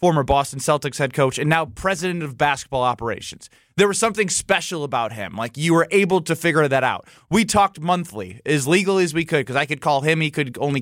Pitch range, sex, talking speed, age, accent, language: 135-185 Hz, male, 225 wpm, 20-39, American, English